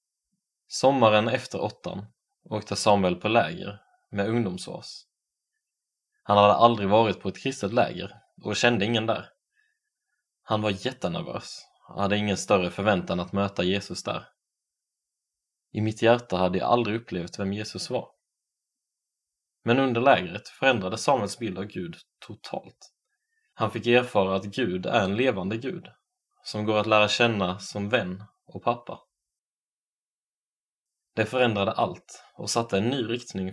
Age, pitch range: 20-39, 100-120 Hz